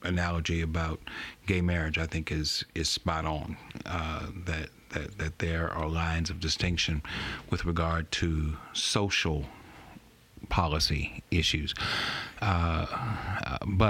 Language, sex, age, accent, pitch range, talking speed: English, male, 50-69, American, 80-95 Hz, 115 wpm